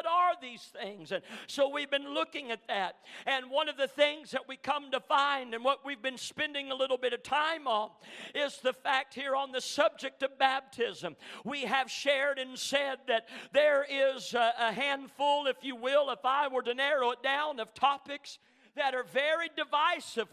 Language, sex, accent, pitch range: English, male, American, 255-295 Hz